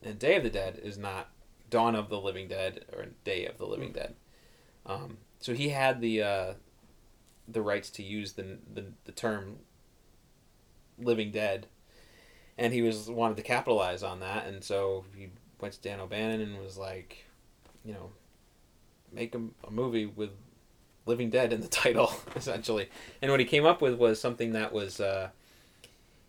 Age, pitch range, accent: 30-49, 95-120 Hz, American